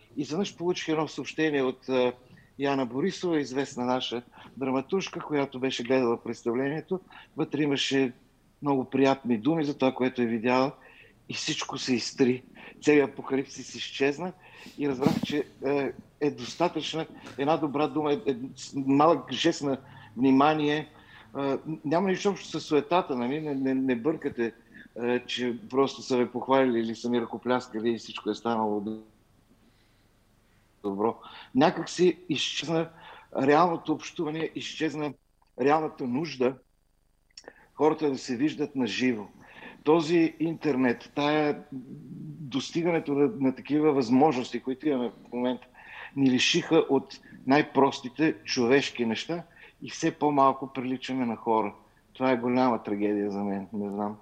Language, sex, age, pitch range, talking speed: Bulgarian, male, 50-69, 125-150 Hz, 125 wpm